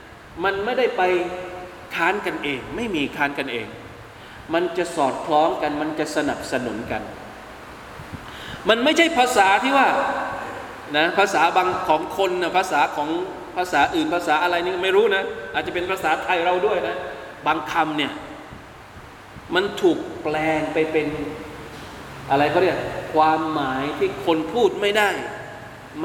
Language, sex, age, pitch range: Thai, male, 20-39, 150-195 Hz